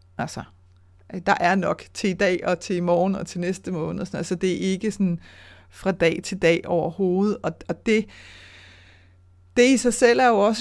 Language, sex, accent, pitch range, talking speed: Danish, female, native, 185-235 Hz, 205 wpm